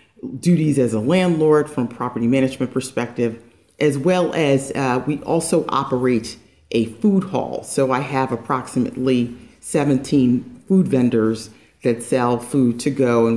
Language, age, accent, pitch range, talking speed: English, 40-59, American, 120-145 Hz, 145 wpm